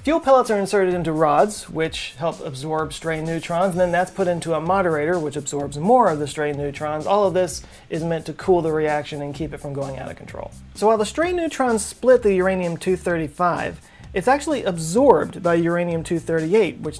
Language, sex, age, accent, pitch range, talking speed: English, male, 30-49, American, 150-185 Hz, 200 wpm